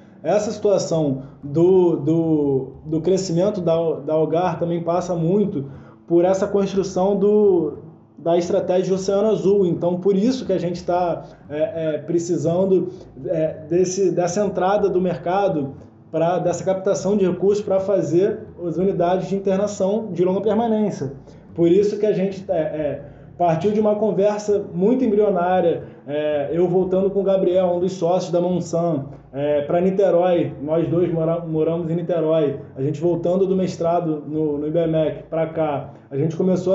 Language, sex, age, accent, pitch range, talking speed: Portuguese, male, 20-39, Brazilian, 160-190 Hz, 160 wpm